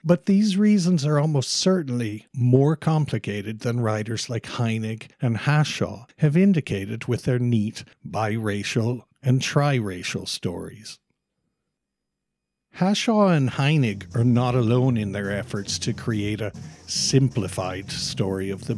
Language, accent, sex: English, Irish, male